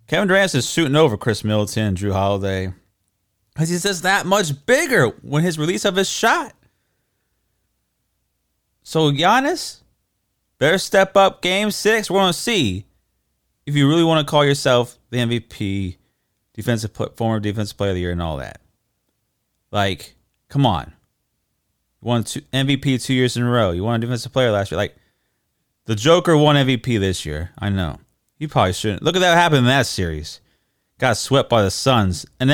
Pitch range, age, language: 105-165 Hz, 30-49, English